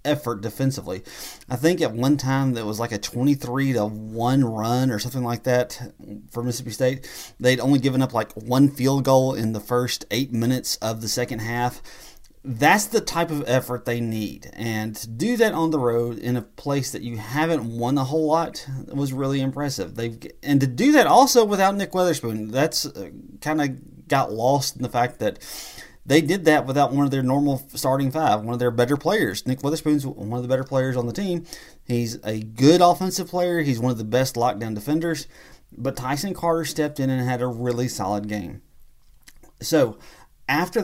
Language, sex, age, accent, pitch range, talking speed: English, male, 30-49, American, 120-150 Hz, 195 wpm